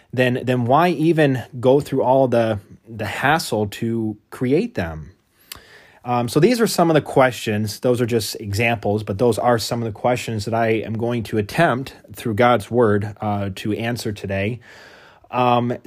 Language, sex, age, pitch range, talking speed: English, male, 20-39, 105-125 Hz, 175 wpm